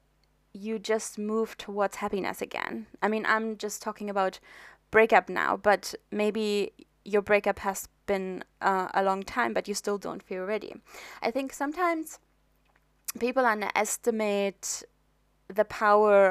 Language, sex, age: English, female, 20-39